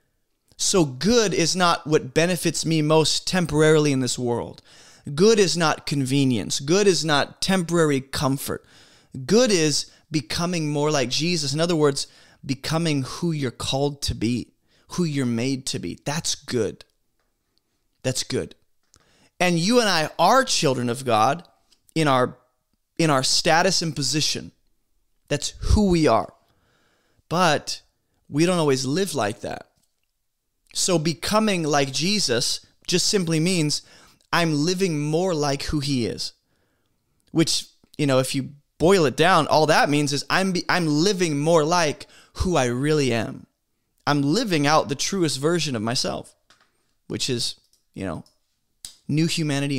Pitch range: 135-170 Hz